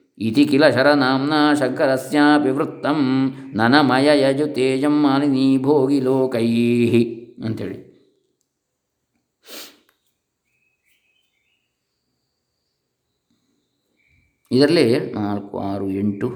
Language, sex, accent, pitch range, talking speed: Kannada, male, native, 110-140 Hz, 55 wpm